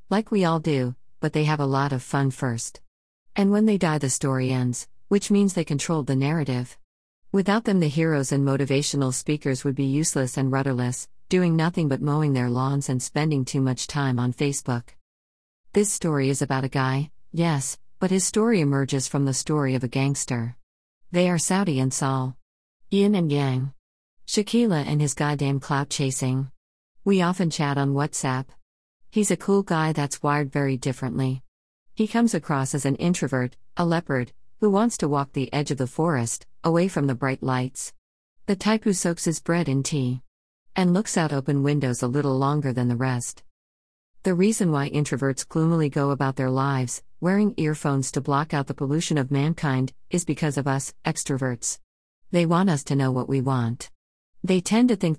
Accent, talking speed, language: American, 185 wpm, English